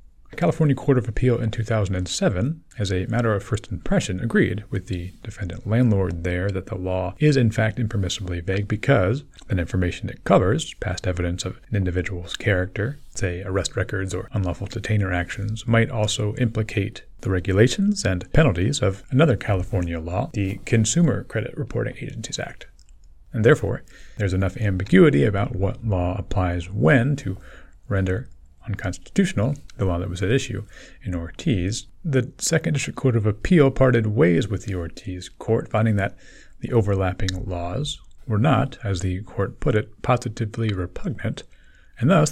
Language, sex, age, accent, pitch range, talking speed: English, male, 30-49, American, 95-120 Hz, 155 wpm